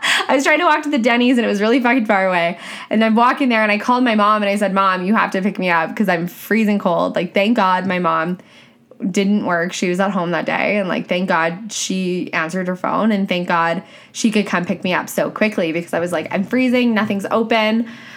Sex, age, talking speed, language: female, 10-29, 260 wpm, English